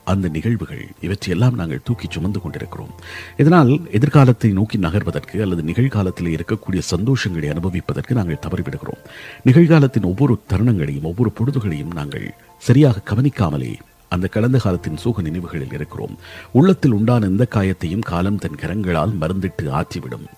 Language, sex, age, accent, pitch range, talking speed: Tamil, male, 50-69, native, 90-125 Hz, 120 wpm